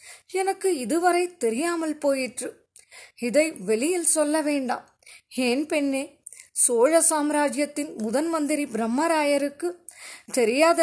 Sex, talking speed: female, 85 wpm